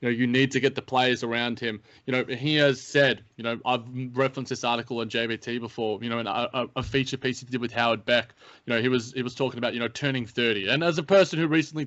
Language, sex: English, male